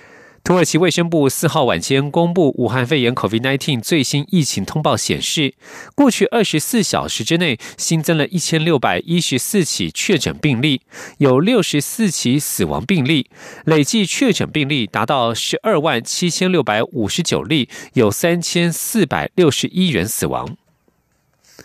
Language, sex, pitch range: German, male, 135-185 Hz